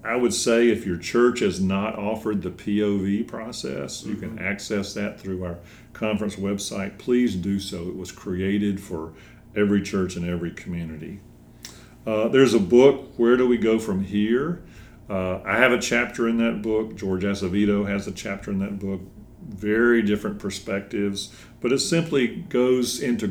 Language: English